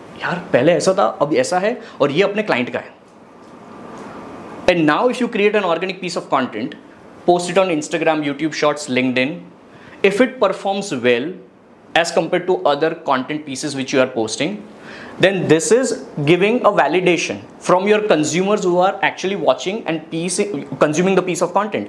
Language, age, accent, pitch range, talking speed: English, 20-39, Indian, 155-210 Hz, 145 wpm